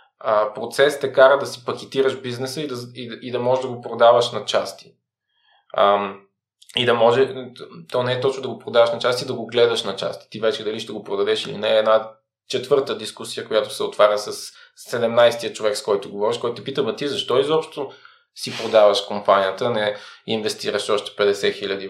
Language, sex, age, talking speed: Bulgarian, male, 20-39, 190 wpm